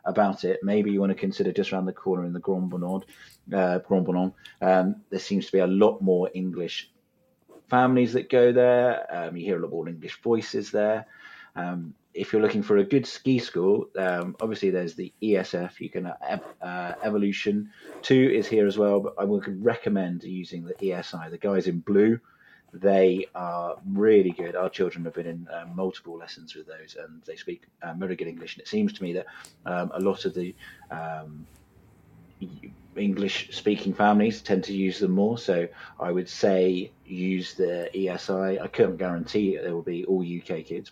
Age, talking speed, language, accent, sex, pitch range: 30-49, 195 wpm, English, British, male, 90-105 Hz